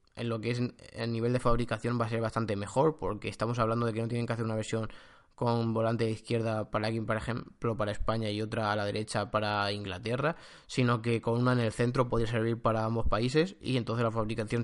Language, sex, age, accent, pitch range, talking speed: Spanish, male, 20-39, Spanish, 110-125 Hz, 235 wpm